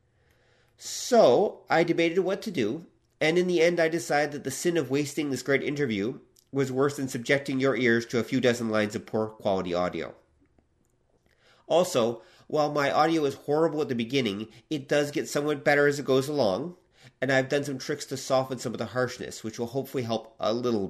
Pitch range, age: 115-145 Hz, 40-59